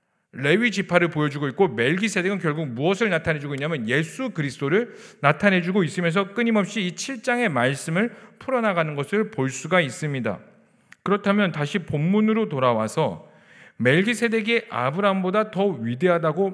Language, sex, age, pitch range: Korean, male, 40-59, 155-215 Hz